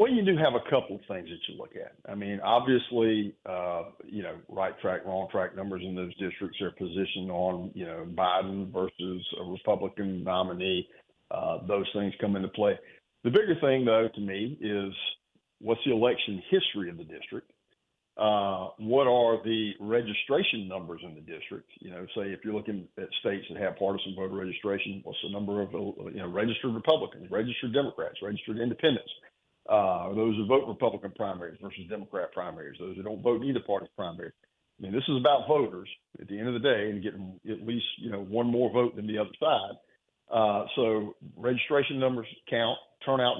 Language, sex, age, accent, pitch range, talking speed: English, male, 50-69, American, 100-125 Hz, 190 wpm